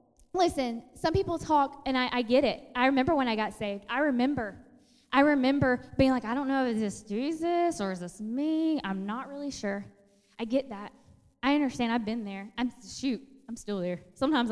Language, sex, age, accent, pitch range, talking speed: English, female, 10-29, American, 215-265 Hz, 205 wpm